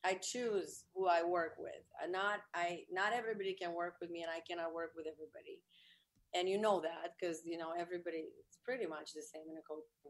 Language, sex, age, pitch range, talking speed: English, female, 30-49, 165-195 Hz, 215 wpm